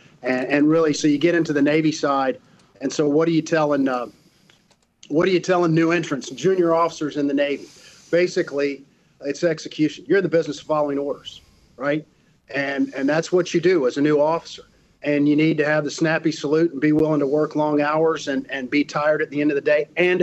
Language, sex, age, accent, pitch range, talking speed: English, male, 50-69, American, 145-170 Hz, 220 wpm